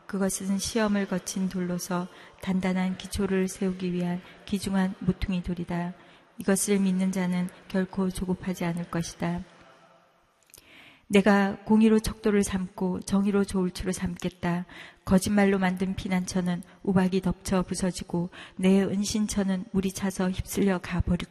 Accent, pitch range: native, 180-195 Hz